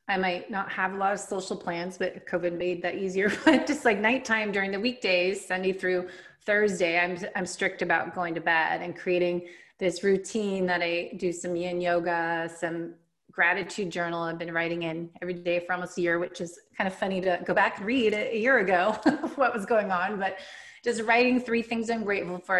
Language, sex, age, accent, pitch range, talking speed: English, female, 30-49, American, 175-215 Hz, 210 wpm